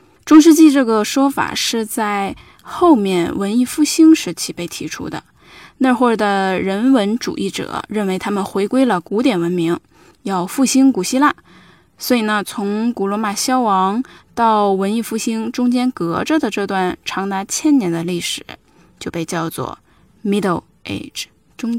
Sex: female